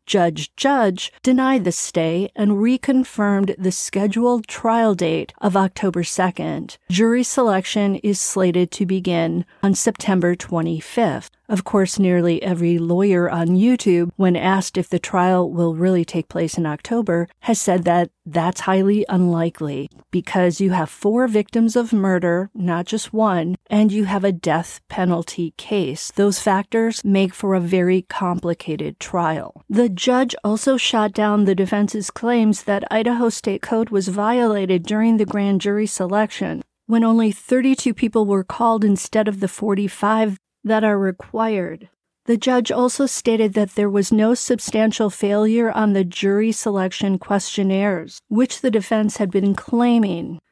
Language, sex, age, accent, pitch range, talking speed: English, female, 40-59, American, 185-225 Hz, 150 wpm